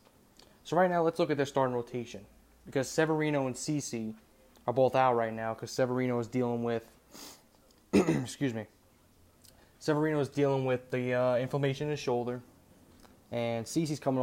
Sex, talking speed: male, 160 wpm